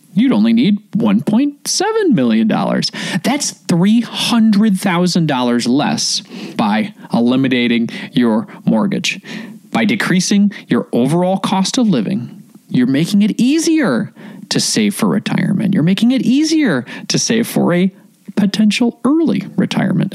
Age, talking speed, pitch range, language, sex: 30-49, 115 wpm, 190-235 Hz, English, male